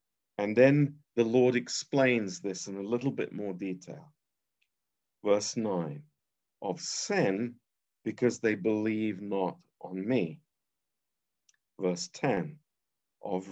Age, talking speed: 50-69, 110 wpm